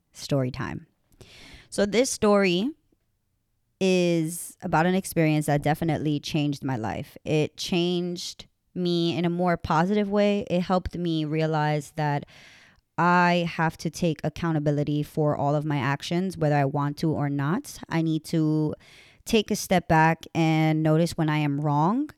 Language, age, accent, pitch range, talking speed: English, 20-39, American, 150-180 Hz, 150 wpm